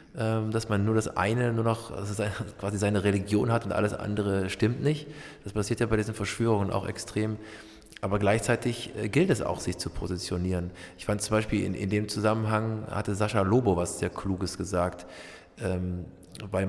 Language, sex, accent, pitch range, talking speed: English, male, German, 95-110 Hz, 175 wpm